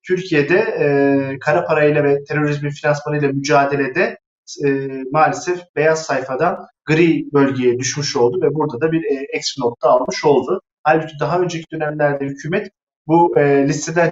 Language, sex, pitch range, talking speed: Turkish, male, 140-175 Hz, 140 wpm